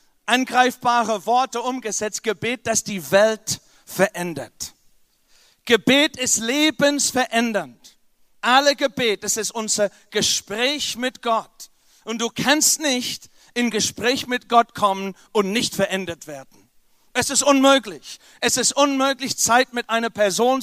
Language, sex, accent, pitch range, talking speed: German, male, German, 200-250 Hz, 120 wpm